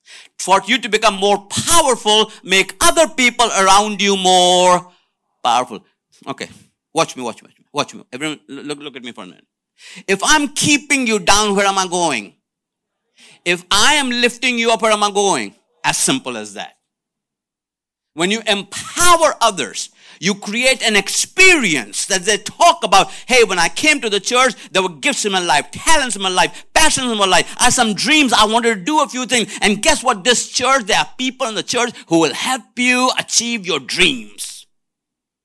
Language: English